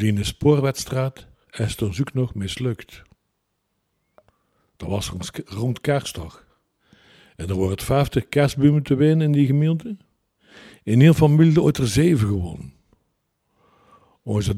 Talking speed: 135 wpm